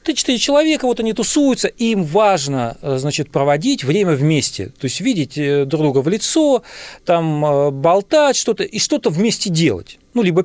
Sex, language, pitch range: male, Russian, 135-195 Hz